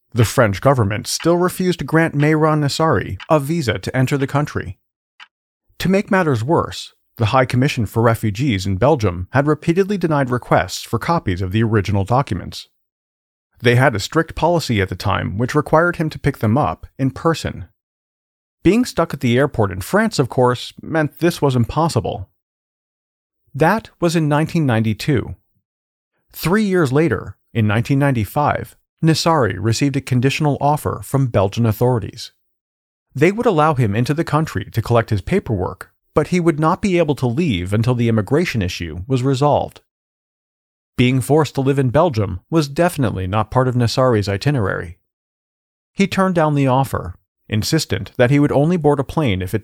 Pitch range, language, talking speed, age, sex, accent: 105-150 Hz, English, 165 wpm, 40-59, male, American